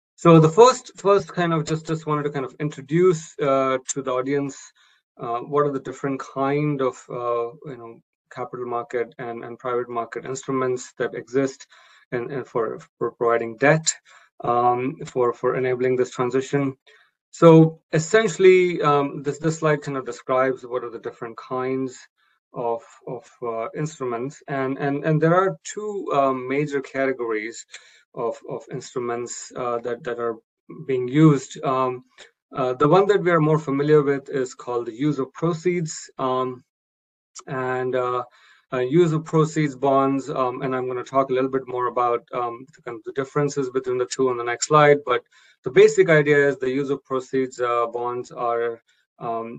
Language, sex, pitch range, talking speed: Hungarian, male, 125-150 Hz, 175 wpm